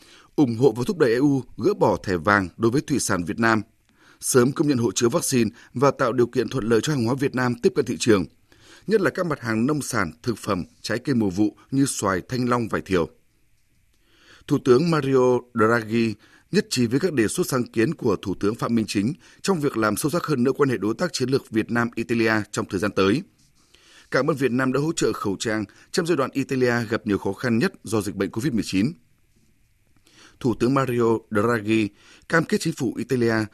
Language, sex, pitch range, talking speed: Vietnamese, male, 110-135 Hz, 220 wpm